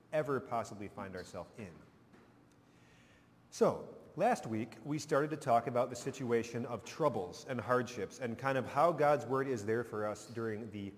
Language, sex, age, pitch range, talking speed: English, male, 30-49, 110-140 Hz, 170 wpm